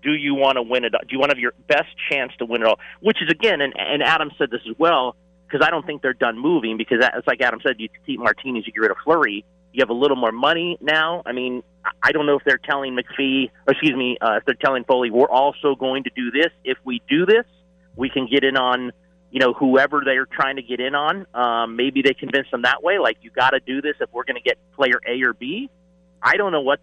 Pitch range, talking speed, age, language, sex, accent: 115-145 Hz, 270 wpm, 30-49, English, male, American